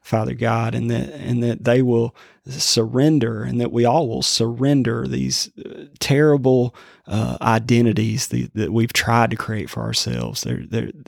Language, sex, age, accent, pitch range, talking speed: English, male, 30-49, American, 115-120 Hz, 155 wpm